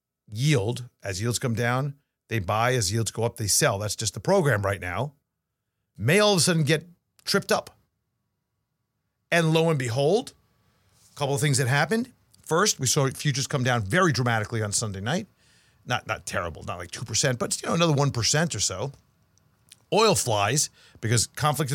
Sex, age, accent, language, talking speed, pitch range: male, 50-69, American, English, 185 wpm, 115-160 Hz